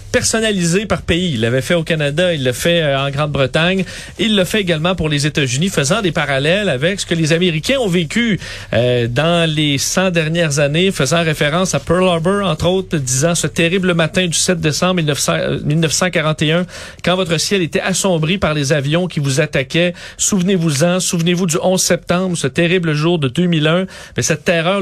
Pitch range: 150-185 Hz